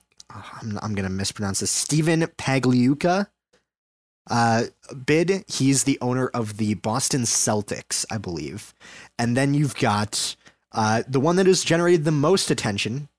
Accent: American